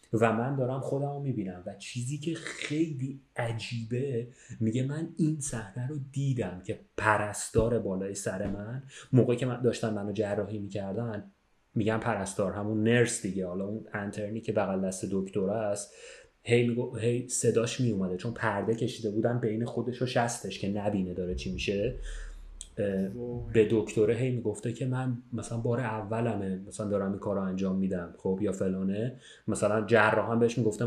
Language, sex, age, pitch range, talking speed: Persian, male, 30-49, 100-125 Hz, 155 wpm